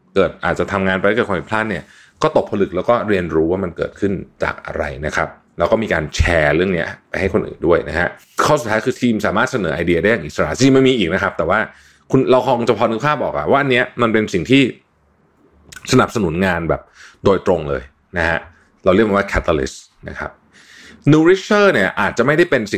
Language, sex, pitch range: Thai, male, 95-130 Hz